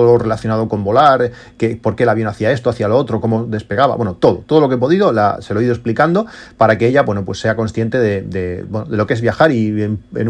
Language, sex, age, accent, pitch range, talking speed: Spanish, male, 30-49, Spanish, 105-130 Hz, 270 wpm